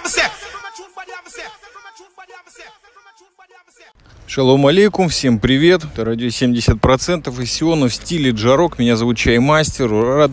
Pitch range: 115-150 Hz